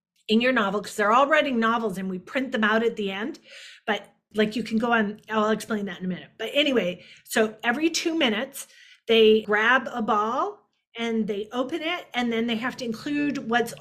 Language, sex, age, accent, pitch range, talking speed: English, female, 40-59, American, 220-275 Hz, 215 wpm